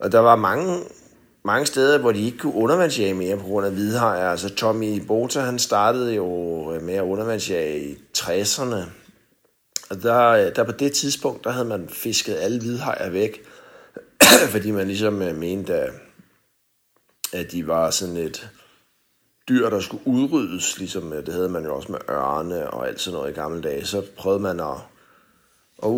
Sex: male